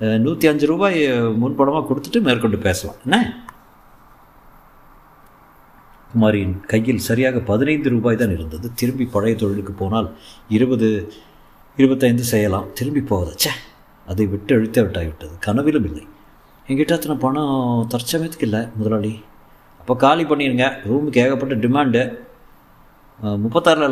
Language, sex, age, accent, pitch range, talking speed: Tamil, male, 50-69, native, 105-135 Hz, 110 wpm